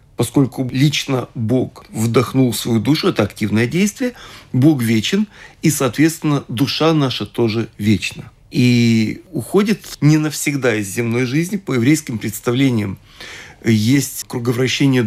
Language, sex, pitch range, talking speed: Russian, male, 120-155 Hz, 115 wpm